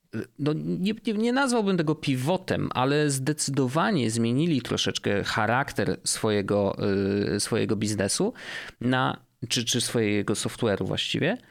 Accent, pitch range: native, 115-155 Hz